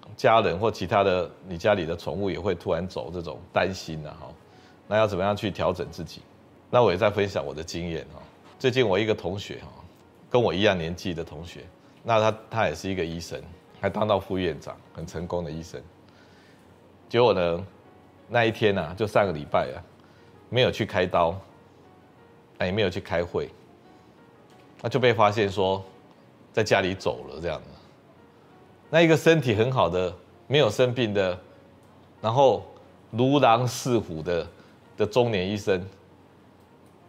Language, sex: Chinese, male